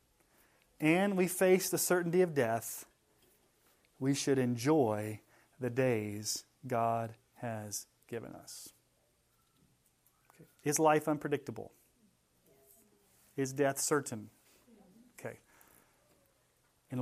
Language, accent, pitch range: English, American, 140-195 Hz